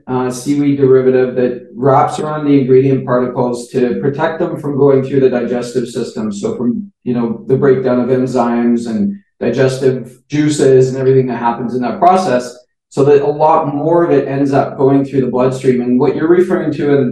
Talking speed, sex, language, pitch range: 195 wpm, male, English, 125-145 Hz